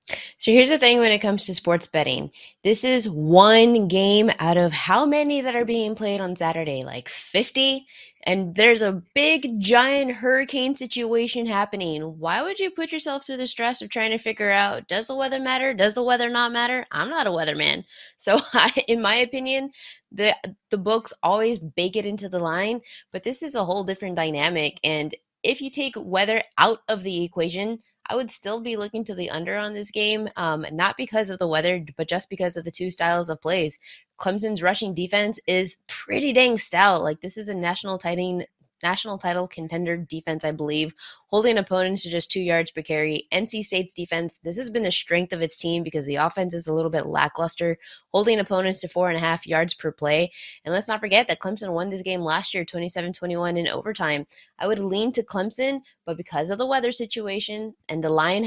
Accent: American